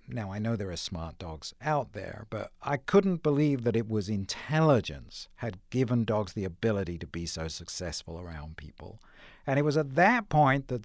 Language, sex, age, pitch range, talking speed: English, male, 60-79, 110-160 Hz, 195 wpm